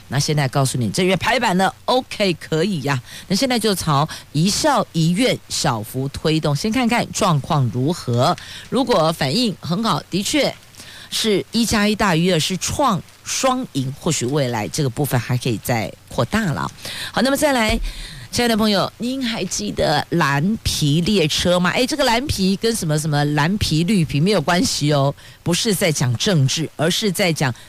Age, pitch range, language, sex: 50-69, 140-200 Hz, Chinese, female